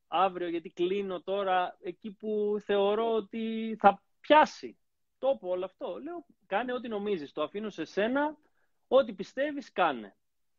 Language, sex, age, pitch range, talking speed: Greek, male, 30-49, 165-225 Hz, 135 wpm